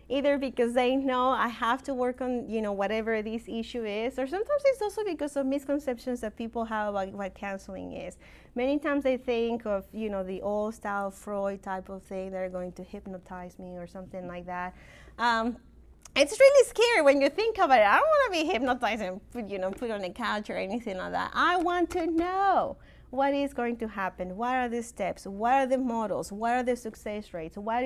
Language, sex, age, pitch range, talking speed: English, female, 30-49, 200-265 Hz, 220 wpm